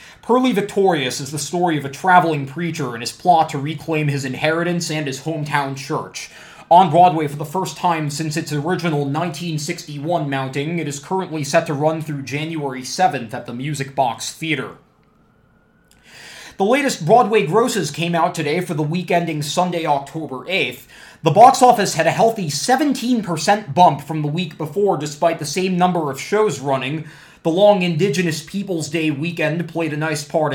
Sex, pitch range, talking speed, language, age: male, 145-175 Hz, 175 wpm, English, 20-39